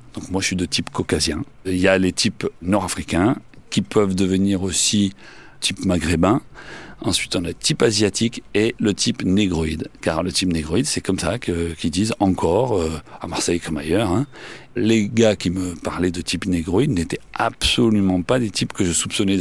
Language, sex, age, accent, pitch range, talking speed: French, male, 40-59, French, 85-110 Hz, 190 wpm